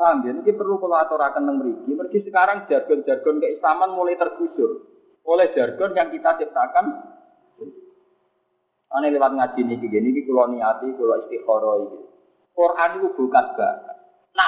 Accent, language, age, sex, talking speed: native, Indonesian, 40-59, male, 125 wpm